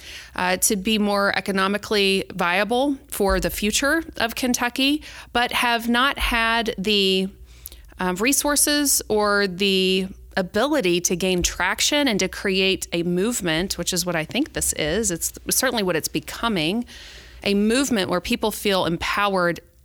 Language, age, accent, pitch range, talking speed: English, 30-49, American, 180-220 Hz, 140 wpm